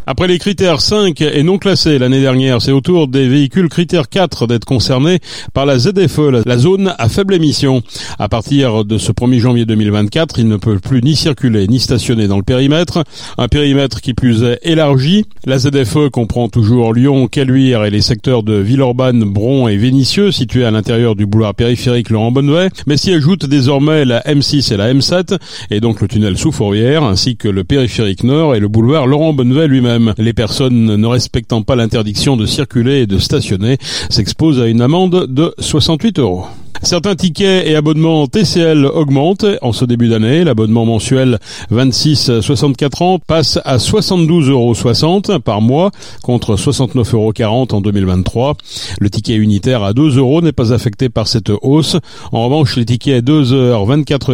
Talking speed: 175 wpm